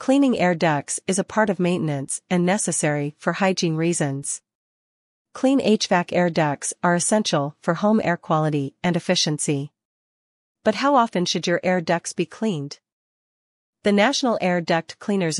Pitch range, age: 155-205 Hz, 40-59